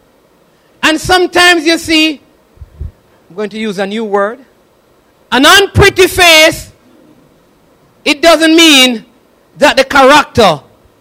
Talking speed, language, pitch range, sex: 110 wpm, English, 235-310 Hz, male